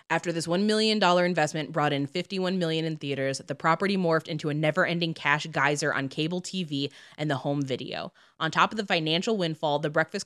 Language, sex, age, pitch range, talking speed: English, female, 20-39, 155-185 Hz, 200 wpm